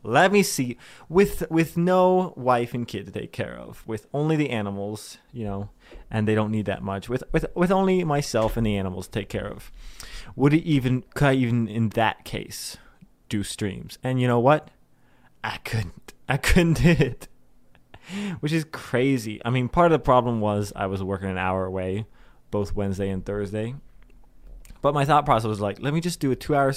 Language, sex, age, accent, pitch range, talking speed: English, male, 20-39, American, 105-145 Hz, 200 wpm